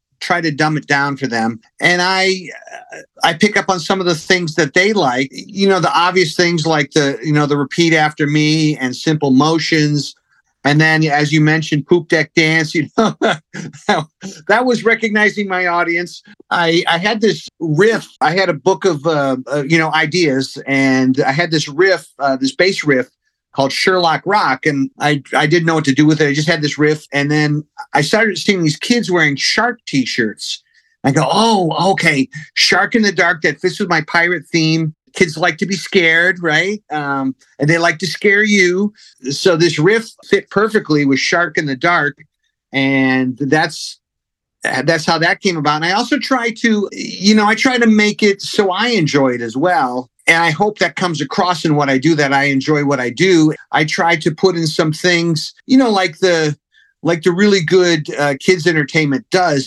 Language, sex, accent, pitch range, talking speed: English, male, American, 145-185 Hz, 200 wpm